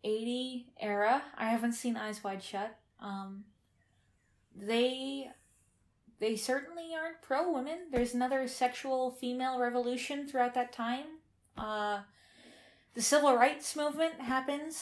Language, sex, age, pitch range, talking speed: English, female, 20-39, 215-275 Hz, 115 wpm